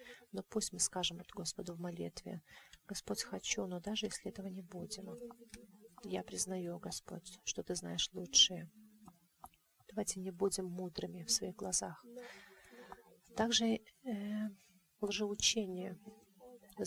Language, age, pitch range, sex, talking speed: English, 30-49, 185-225 Hz, female, 120 wpm